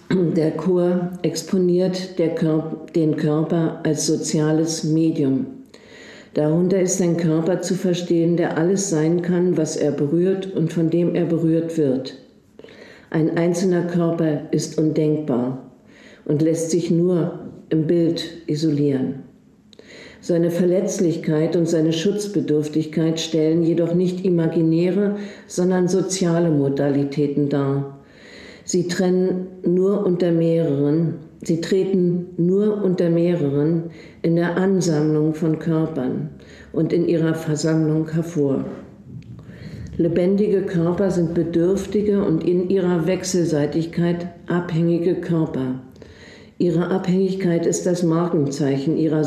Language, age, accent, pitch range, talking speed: German, 50-69, German, 155-180 Hz, 100 wpm